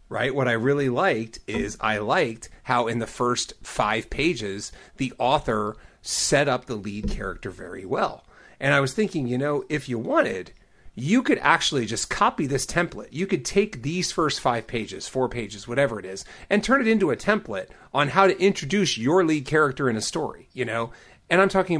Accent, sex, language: American, male, English